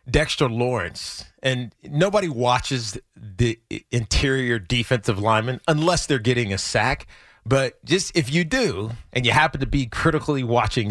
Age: 30-49